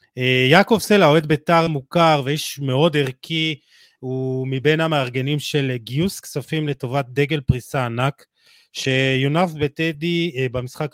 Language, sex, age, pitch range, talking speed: Hebrew, male, 30-49, 125-145 Hz, 115 wpm